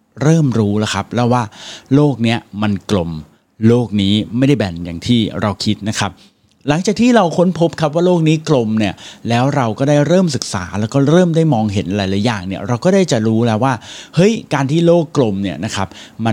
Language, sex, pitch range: Thai, male, 105-145 Hz